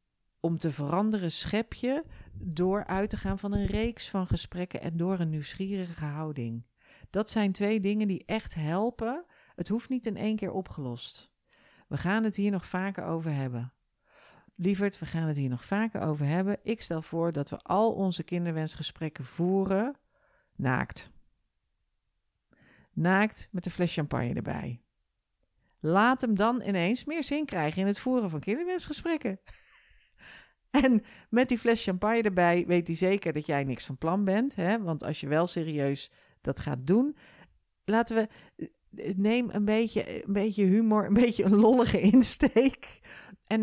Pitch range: 155-220 Hz